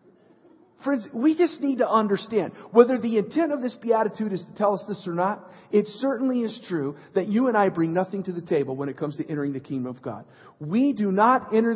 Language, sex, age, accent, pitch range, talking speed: English, male, 50-69, American, 165-225 Hz, 230 wpm